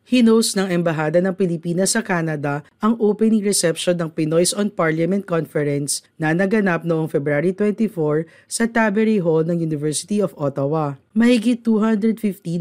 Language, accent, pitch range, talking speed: Filipino, native, 145-200 Hz, 140 wpm